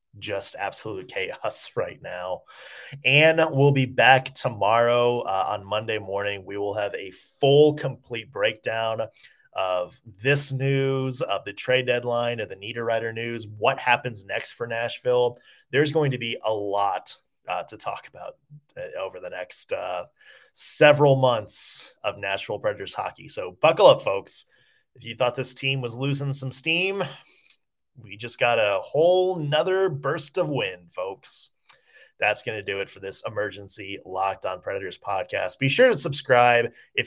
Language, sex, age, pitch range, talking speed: English, male, 30-49, 115-160 Hz, 155 wpm